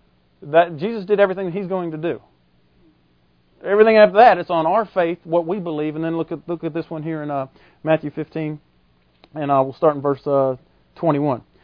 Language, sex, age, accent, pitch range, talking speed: English, male, 40-59, American, 140-200 Hz, 205 wpm